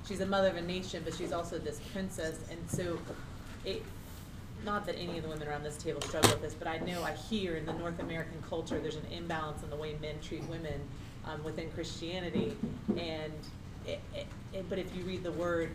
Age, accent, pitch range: 30-49, American, 140-175 Hz